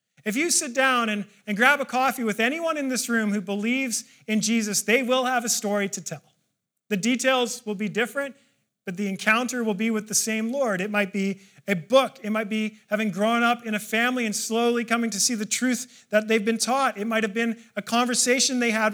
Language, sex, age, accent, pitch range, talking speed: English, male, 40-59, American, 205-250 Hz, 230 wpm